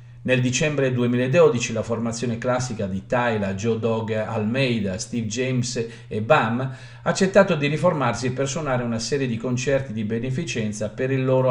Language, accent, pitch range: Italian, native, 115-135 Hz